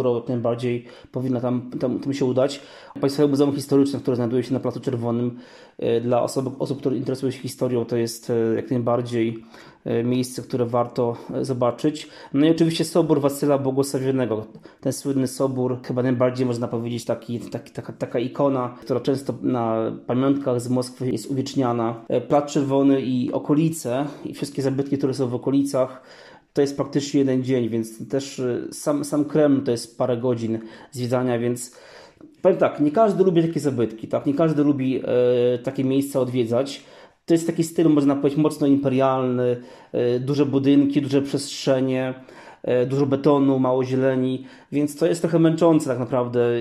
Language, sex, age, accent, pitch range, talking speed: Polish, male, 20-39, native, 125-145 Hz, 155 wpm